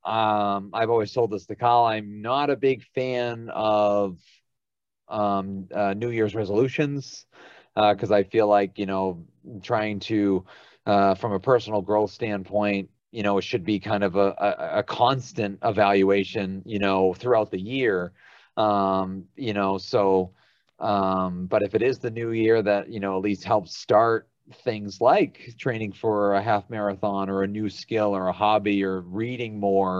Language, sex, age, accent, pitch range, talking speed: English, male, 30-49, American, 95-110 Hz, 170 wpm